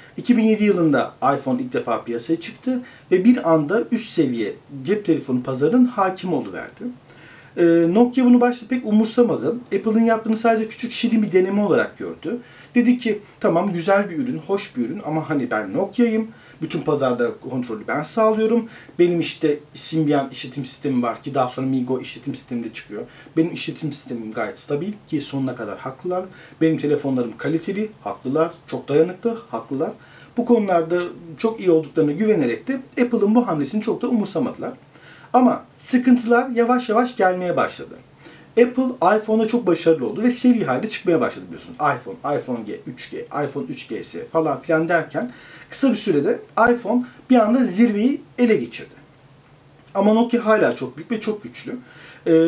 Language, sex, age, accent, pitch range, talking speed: Turkish, male, 40-59, native, 160-240 Hz, 155 wpm